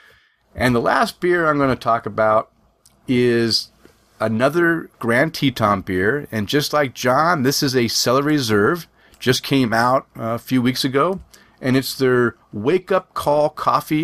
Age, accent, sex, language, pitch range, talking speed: 30-49, American, male, English, 115-140 Hz, 160 wpm